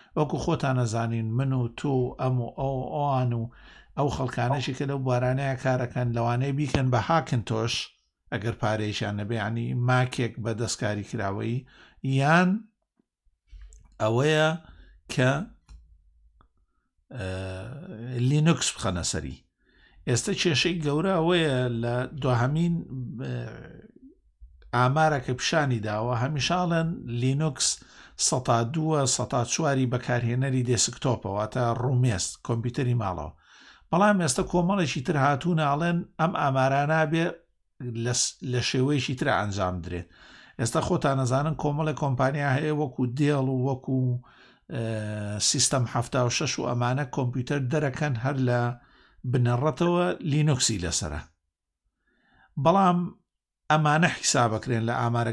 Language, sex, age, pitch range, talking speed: Arabic, male, 60-79, 115-150 Hz, 115 wpm